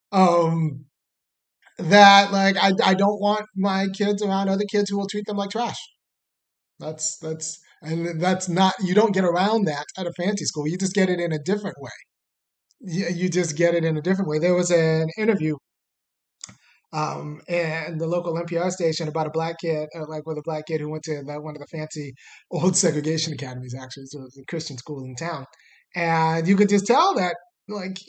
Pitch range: 160-205 Hz